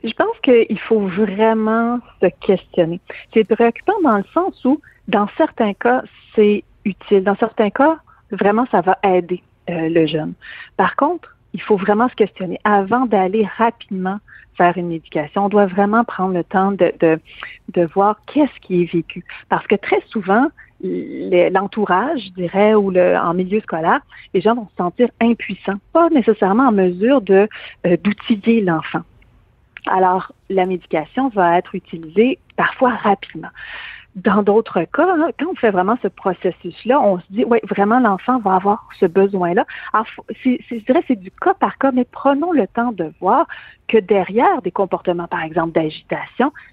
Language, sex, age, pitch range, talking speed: French, female, 50-69, 185-240 Hz, 170 wpm